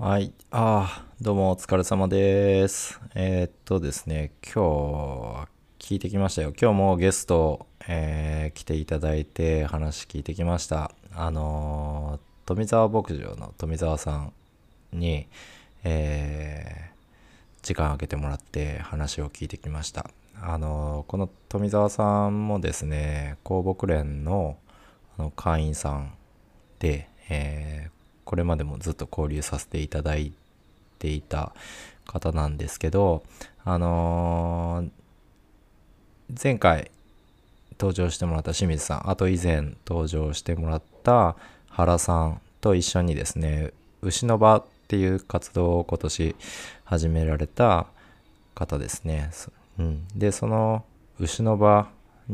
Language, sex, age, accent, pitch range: Japanese, male, 20-39, native, 75-95 Hz